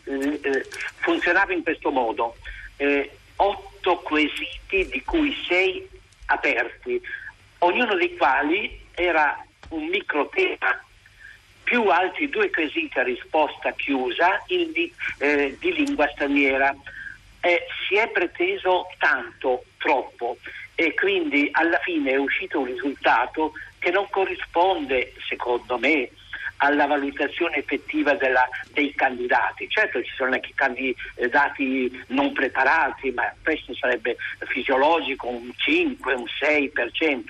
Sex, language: male, Italian